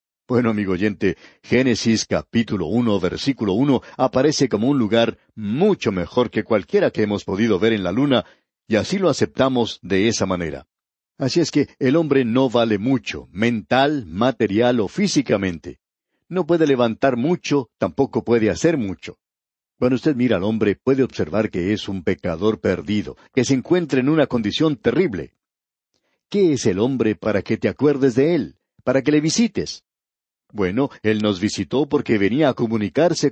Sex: male